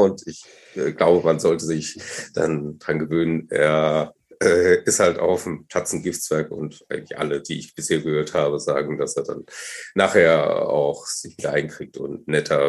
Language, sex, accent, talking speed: German, male, German, 170 wpm